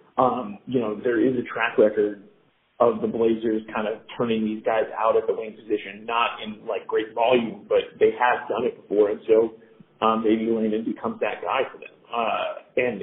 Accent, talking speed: American, 205 wpm